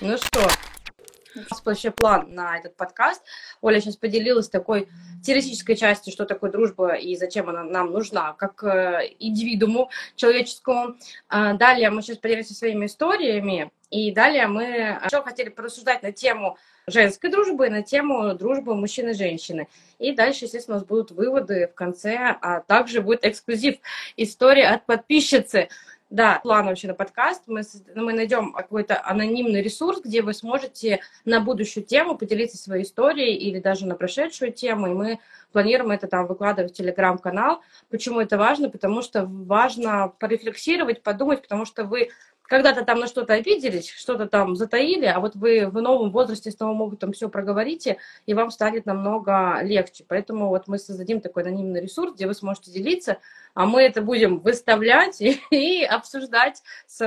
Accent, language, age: native, Russian, 20-39